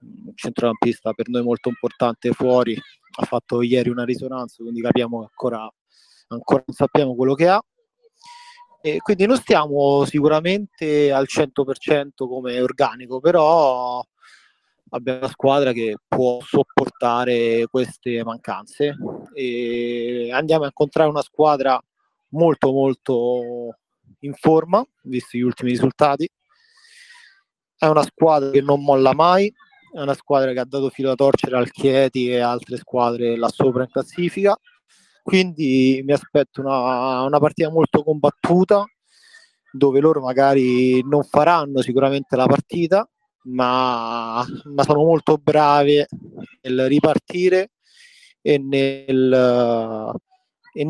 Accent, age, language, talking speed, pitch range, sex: native, 30-49, Italian, 125 wpm, 125-165 Hz, male